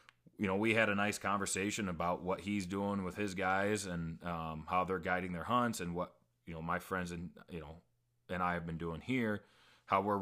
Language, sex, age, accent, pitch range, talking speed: English, male, 30-49, American, 85-105 Hz, 225 wpm